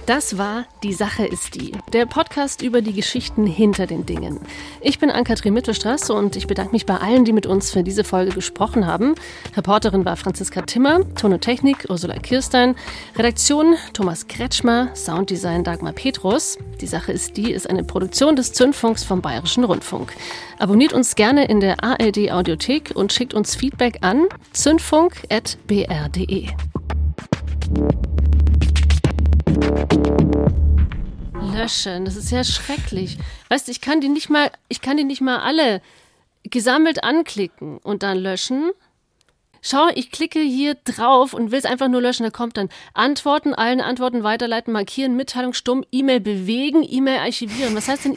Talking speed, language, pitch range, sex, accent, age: 145 wpm, German, 190-270 Hz, female, German, 40-59